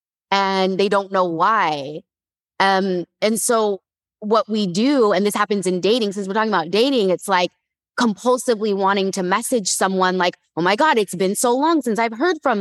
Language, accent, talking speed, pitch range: English, American, 190 wpm, 185-225 Hz